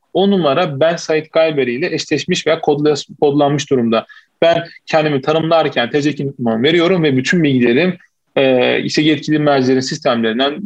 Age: 40-59